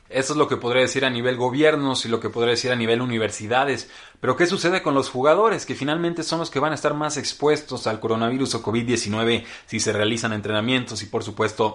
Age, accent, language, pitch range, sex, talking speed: 30-49, Mexican, Spanish, 115-150 Hz, male, 225 wpm